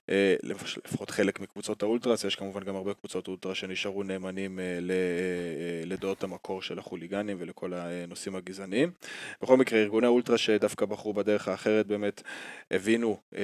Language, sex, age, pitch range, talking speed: Hebrew, male, 20-39, 95-105 Hz, 130 wpm